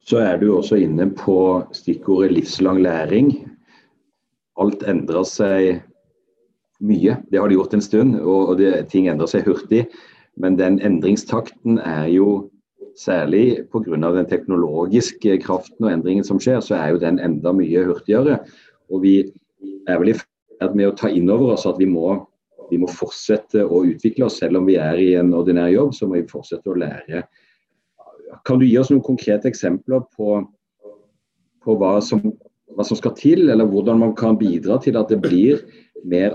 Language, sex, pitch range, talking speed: English, male, 90-110 Hz, 180 wpm